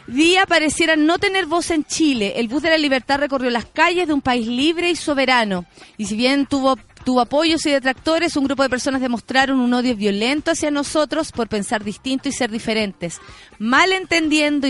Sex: female